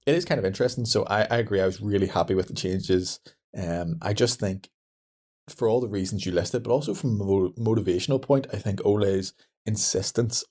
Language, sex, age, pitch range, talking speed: English, male, 20-39, 95-115 Hz, 205 wpm